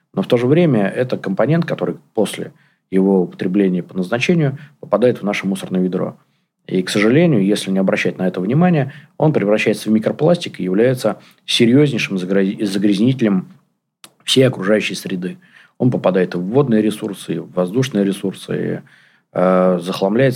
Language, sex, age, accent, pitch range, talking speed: Russian, male, 20-39, native, 95-130 Hz, 155 wpm